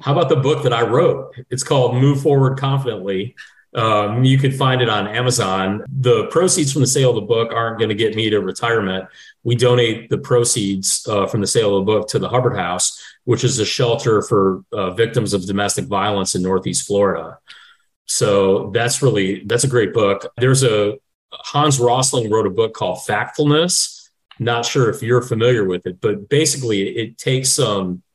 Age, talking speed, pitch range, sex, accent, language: 30-49, 190 wpm, 100-125 Hz, male, American, English